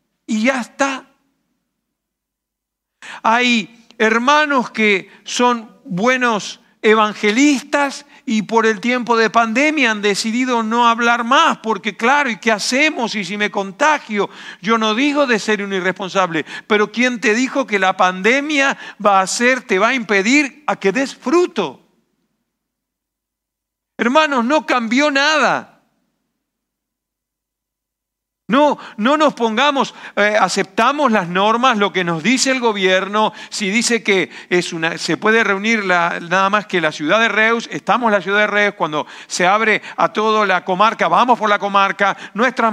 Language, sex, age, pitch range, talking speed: Spanish, male, 50-69, 200-255 Hz, 145 wpm